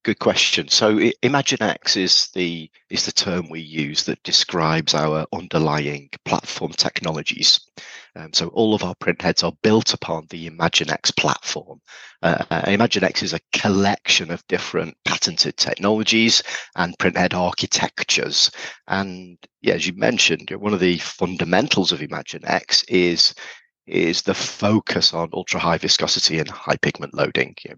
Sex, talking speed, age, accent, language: male, 145 wpm, 40-59, British, English